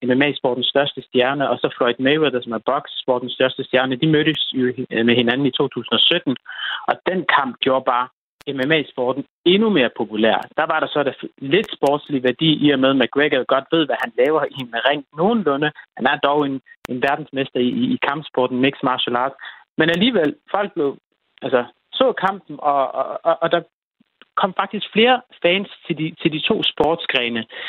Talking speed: 185 wpm